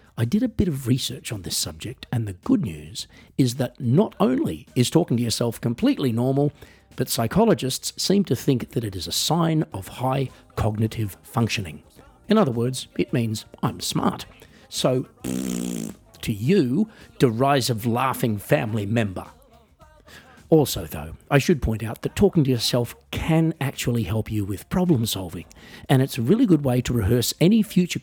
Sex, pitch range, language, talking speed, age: male, 105-140 Hz, English, 170 wpm, 50-69